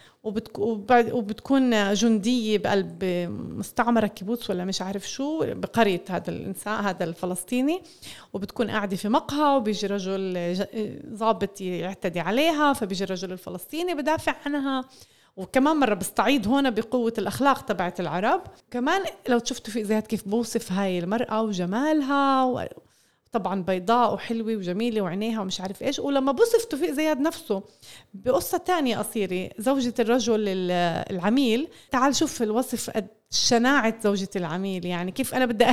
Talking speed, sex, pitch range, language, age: 130 wpm, female, 200-255 Hz, Arabic, 30-49